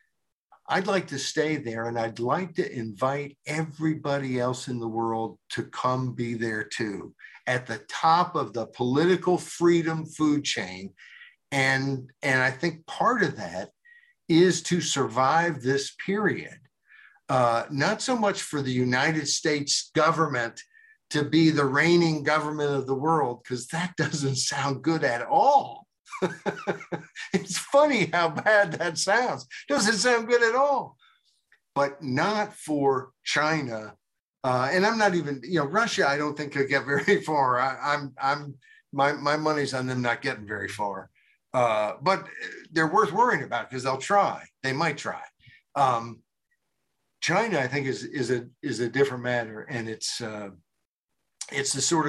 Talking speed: 155 wpm